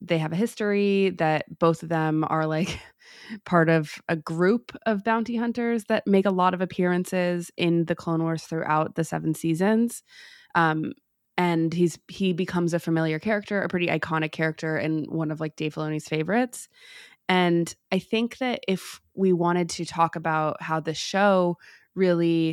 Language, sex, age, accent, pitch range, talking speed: English, female, 20-39, American, 165-200 Hz, 170 wpm